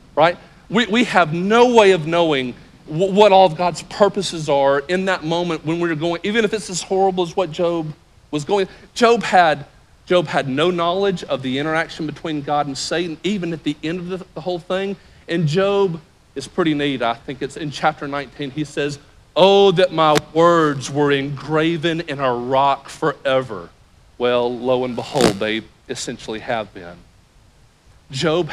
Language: English